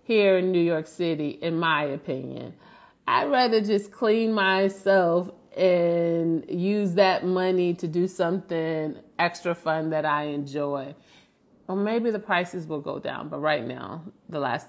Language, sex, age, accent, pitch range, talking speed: English, female, 30-49, American, 165-210 Hz, 150 wpm